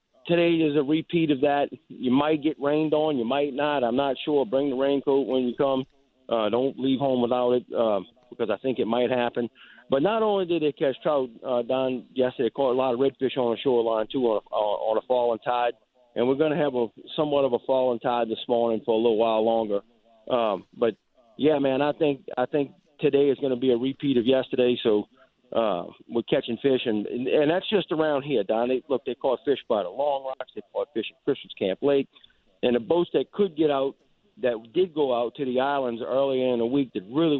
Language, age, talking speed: English, 40-59, 235 wpm